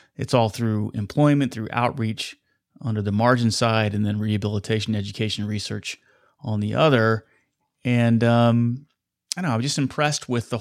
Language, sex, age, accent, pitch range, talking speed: English, male, 30-49, American, 110-130 Hz, 170 wpm